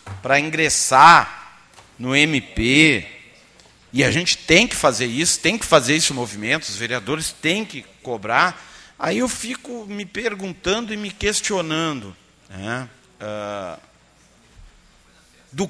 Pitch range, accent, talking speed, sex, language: 130-215 Hz, Brazilian, 120 wpm, male, Portuguese